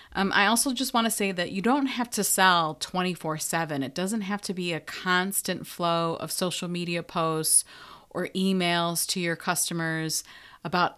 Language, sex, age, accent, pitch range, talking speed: English, female, 30-49, American, 165-210 Hz, 175 wpm